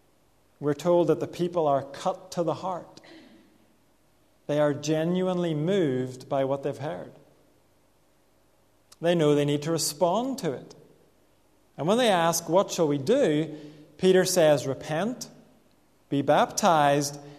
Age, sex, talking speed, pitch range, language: 40-59, male, 135 wpm, 145-180 Hz, English